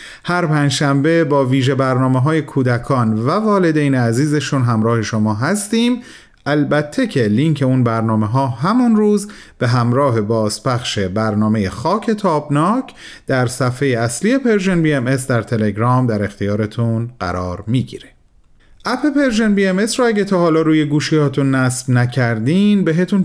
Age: 40-59